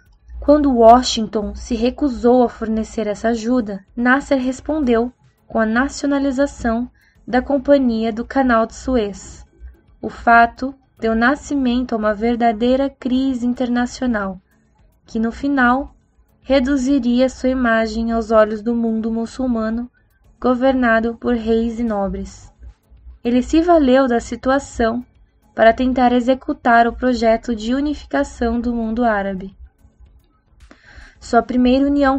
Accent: Brazilian